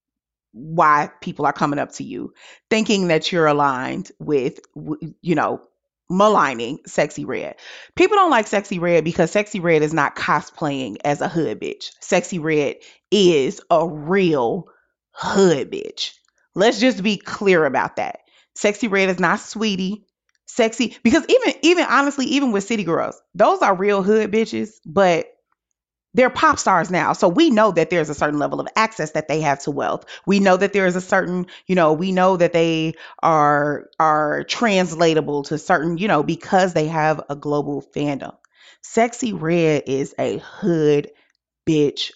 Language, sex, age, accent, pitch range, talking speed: English, female, 30-49, American, 150-205 Hz, 165 wpm